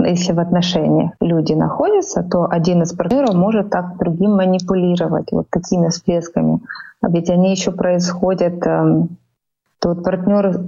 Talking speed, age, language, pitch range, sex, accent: 135 wpm, 20-39, Russian, 175-200 Hz, female, native